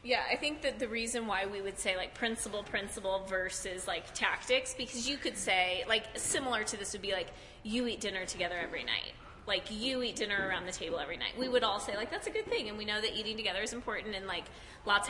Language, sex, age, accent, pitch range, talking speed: English, female, 20-39, American, 195-240 Hz, 245 wpm